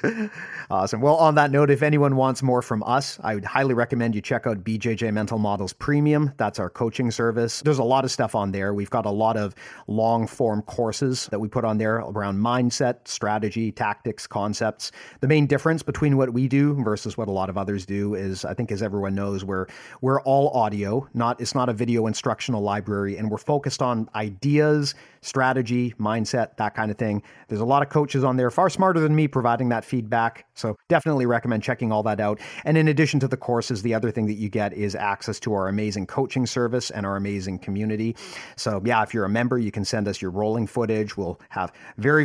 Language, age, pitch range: English, 40-59, 105-130 Hz